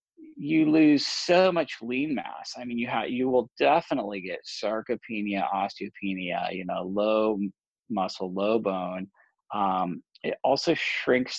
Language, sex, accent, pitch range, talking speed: English, male, American, 105-165 Hz, 130 wpm